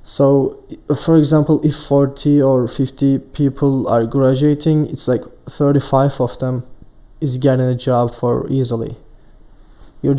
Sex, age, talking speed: male, 20-39, 130 wpm